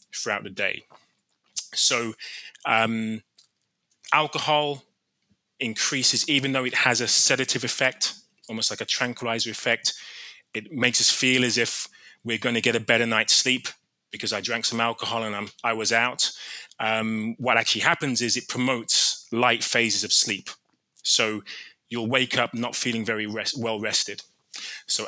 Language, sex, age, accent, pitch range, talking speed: English, male, 20-39, British, 110-125 Hz, 150 wpm